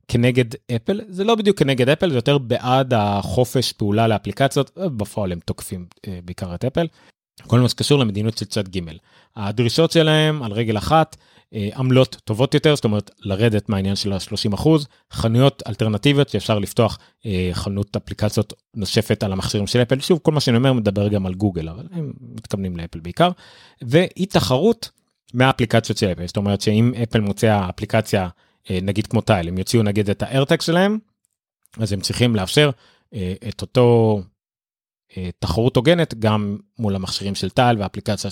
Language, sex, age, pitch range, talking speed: Hebrew, male, 30-49, 105-130 Hz, 155 wpm